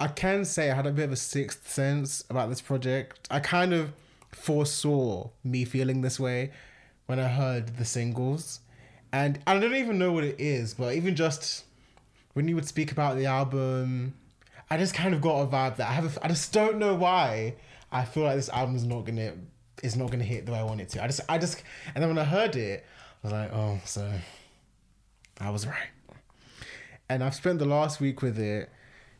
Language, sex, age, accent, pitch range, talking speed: English, male, 20-39, British, 120-155 Hz, 215 wpm